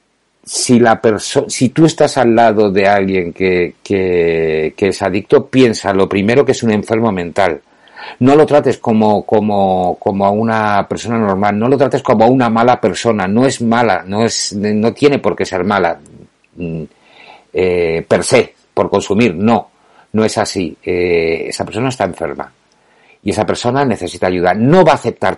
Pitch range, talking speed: 90-120 Hz, 175 wpm